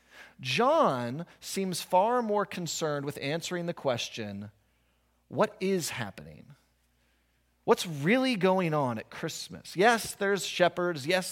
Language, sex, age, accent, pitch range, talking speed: English, male, 30-49, American, 115-175 Hz, 115 wpm